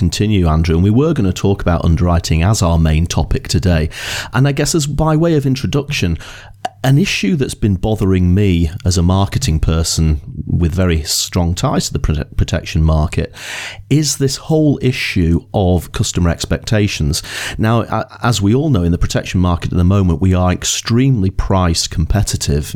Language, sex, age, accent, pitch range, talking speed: English, male, 40-59, British, 85-110 Hz, 170 wpm